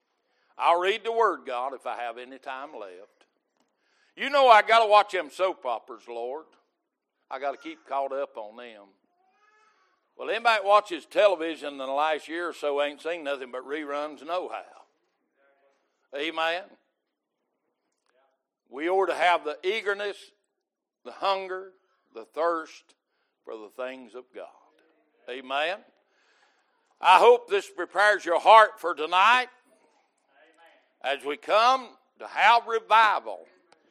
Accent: American